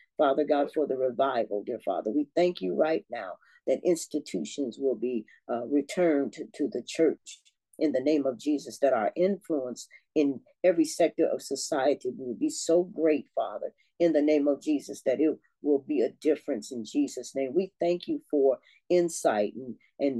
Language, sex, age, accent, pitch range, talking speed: English, female, 40-59, American, 140-205 Hz, 185 wpm